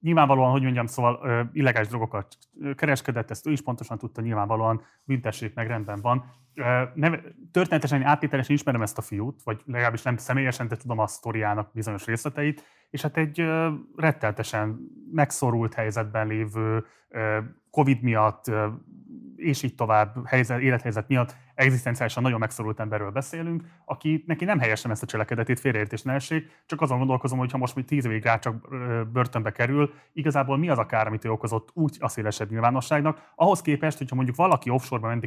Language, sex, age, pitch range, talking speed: Hungarian, male, 30-49, 115-145 Hz, 160 wpm